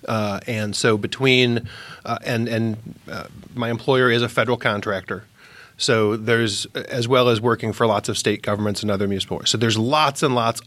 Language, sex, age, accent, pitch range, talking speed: English, male, 30-49, American, 110-135 Hz, 195 wpm